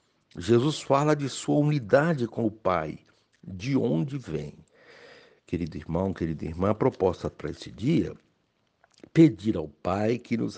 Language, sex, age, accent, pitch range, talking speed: Portuguese, male, 60-79, Brazilian, 100-135 Hz, 145 wpm